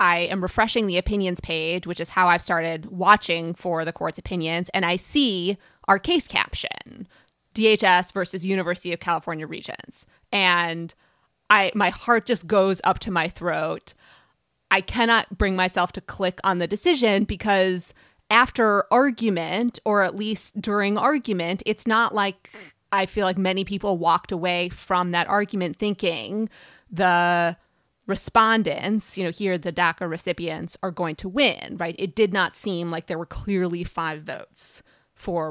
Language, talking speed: English, 155 wpm